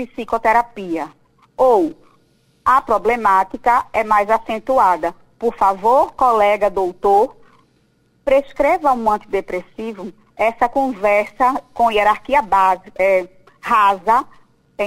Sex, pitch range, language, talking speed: female, 210-295 Hz, Portuguese, 85 wpm